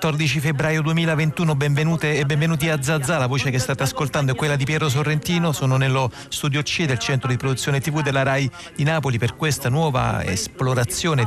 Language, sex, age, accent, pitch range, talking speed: Italian, male, 40-59, native, 120-140 Hz, 185 wpm